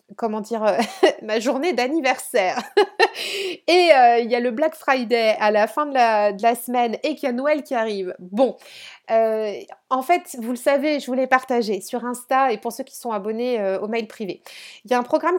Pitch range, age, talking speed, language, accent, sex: 215-260 Hz, 30-49, 220 wpm, French, French, female